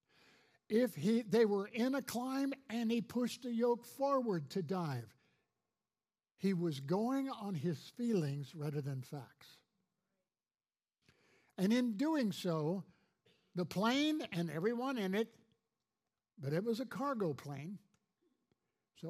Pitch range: 165-230 Hz